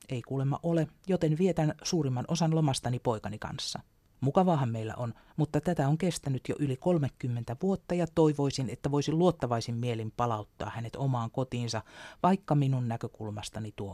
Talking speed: 150 wpm